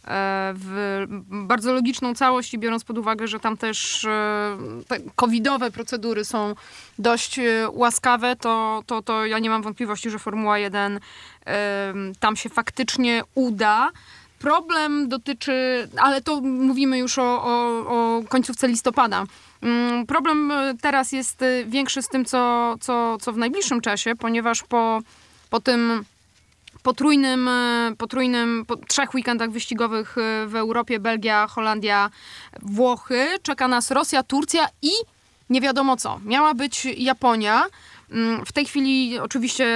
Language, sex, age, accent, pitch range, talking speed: Polish, female, 20-39, native, 220-265 Hz, 125 wpm